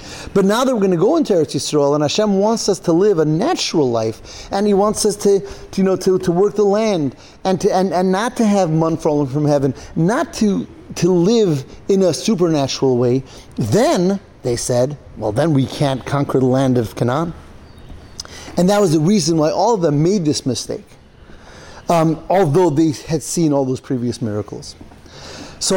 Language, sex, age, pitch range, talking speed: English, male, 30-49, 135-190 Hz, 195 wpm